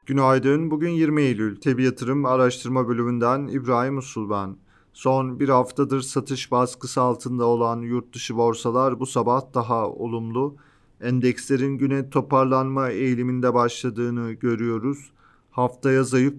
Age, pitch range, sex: 40-59, 120-140 Hz, male